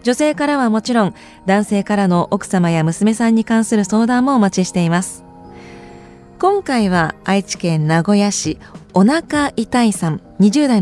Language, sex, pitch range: Japanese, female, 185-250 Hz